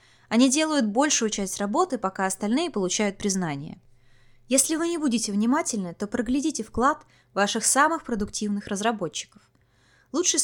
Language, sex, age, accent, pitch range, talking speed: Russian, female, 20-39, native, 180-265 Hz, 125 wpm